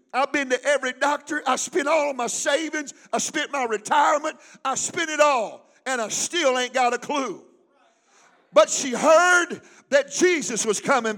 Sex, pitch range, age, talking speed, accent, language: male, 275-335 Hz, 50-69, 175 wpm, American, English